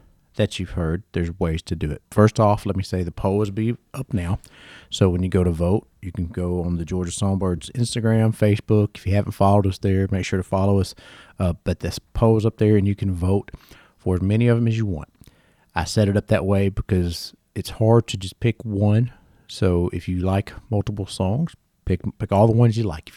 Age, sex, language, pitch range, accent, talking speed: 40-59, male, English, 90-110 Hz, American, 235 wpm